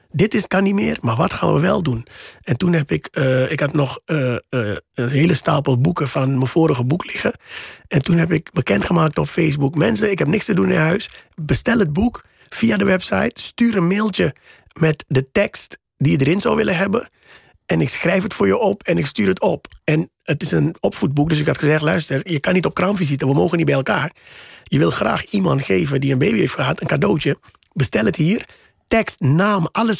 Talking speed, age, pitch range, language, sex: 225 wpm, 40-59, 135-185 Hz, Dutch, male